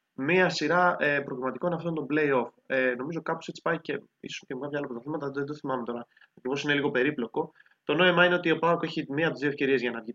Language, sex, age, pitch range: Greek, male, 20-39, 125-185 Hz